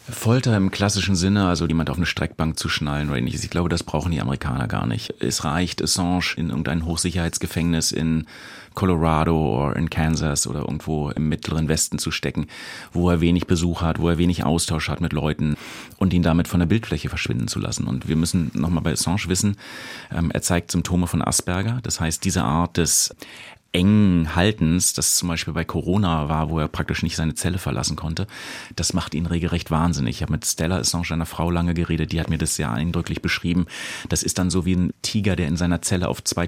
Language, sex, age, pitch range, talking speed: German, male, 30-49, 80-90 Hz, 210 wpm